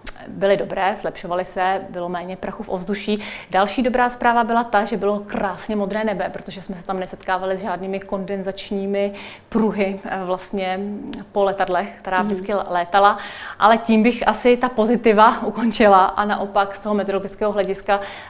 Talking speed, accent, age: 155 wpm, native, 30-49